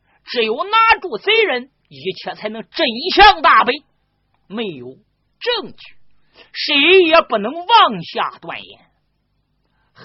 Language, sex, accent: Chinese, male, native